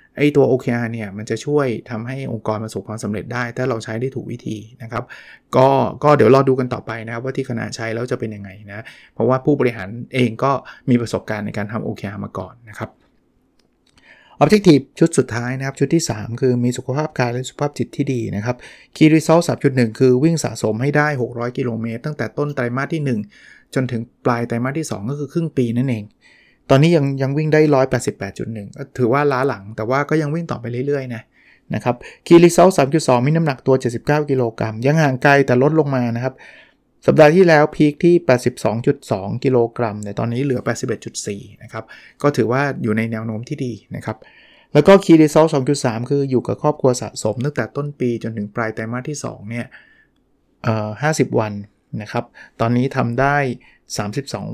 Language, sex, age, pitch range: Thai, male, 20-39, 115-140 Hz